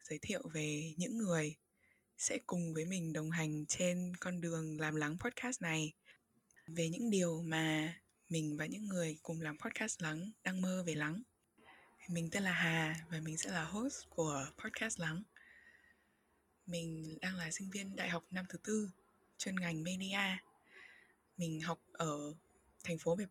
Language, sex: Vietnamese, female